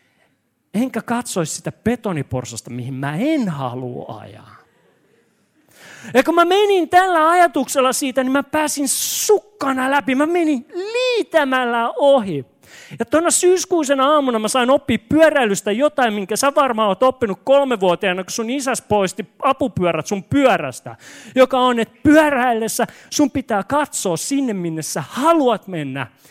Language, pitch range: Finnish, 185-280 Hz